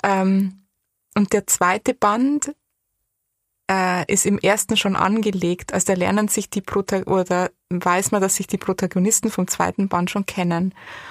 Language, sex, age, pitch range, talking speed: German, female, 20-39, 185-225 Hz, 145 wpm